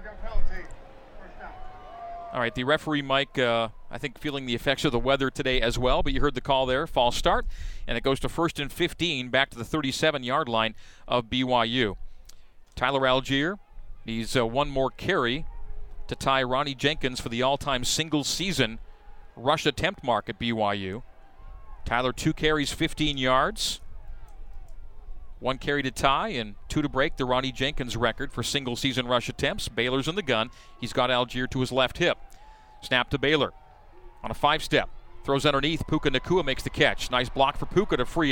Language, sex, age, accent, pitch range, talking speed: English, male, 40-59, American, 120-150 Hz, 170 wpm